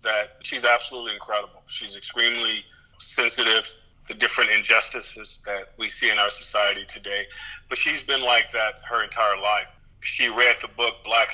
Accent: American